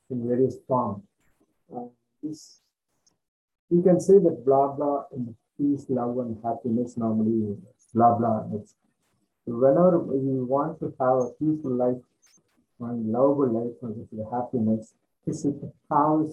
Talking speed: 130 wpm